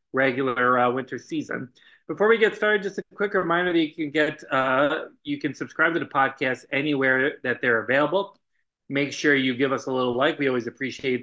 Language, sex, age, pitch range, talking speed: English, male, 30-49, 125-150 Hz, 205 wpm